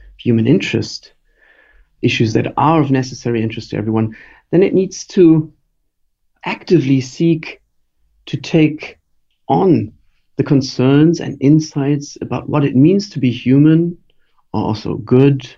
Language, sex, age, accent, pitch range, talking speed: English, male, 50-69, German, 115-145 Hz, 125 wpm